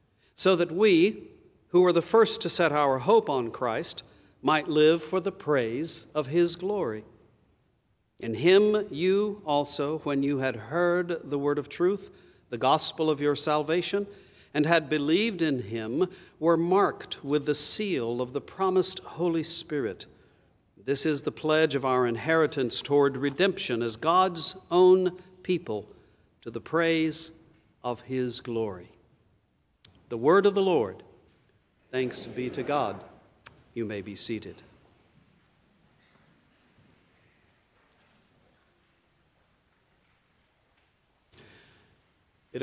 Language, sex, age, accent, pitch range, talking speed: English, male, 50-69, American, 125-170 Hz, 120 wpm